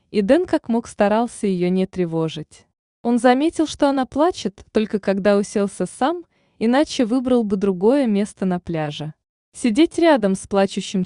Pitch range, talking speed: 185-260 Hz, 150 wpm